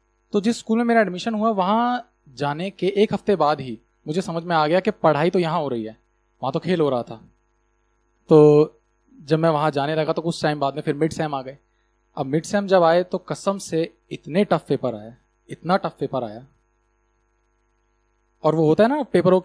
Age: 20-39